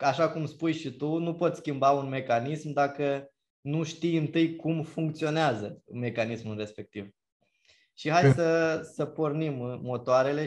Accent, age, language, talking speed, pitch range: native, 20-39, Romanian, 140 wpm, 130-160 Hz